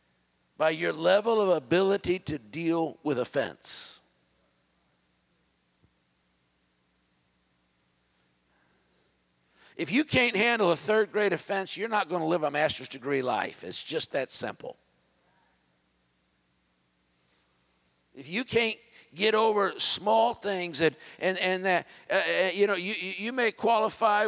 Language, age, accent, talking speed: English, 50-69, American, 120 wpm